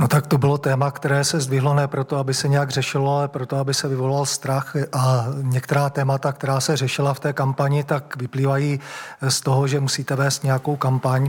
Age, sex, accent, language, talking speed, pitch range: 40-59, male, native, Czech, 200 wpm, 135-145 Hz